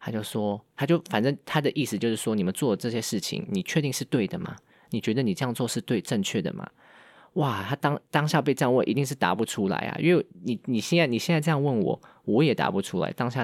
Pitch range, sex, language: 110-155 Hz, male, Chinese